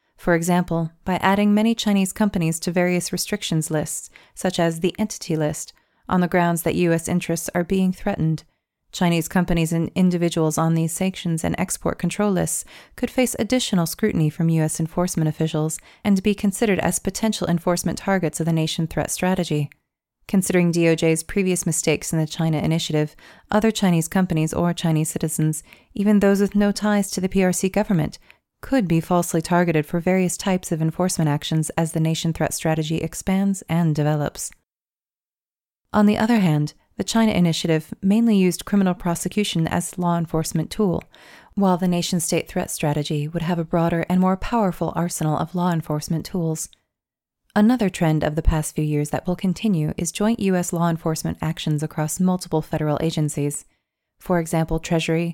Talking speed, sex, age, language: 165 wpm, female, 30-49, English